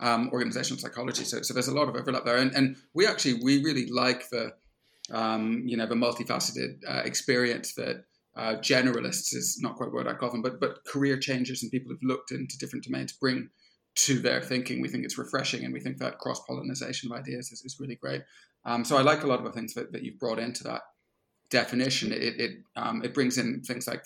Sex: male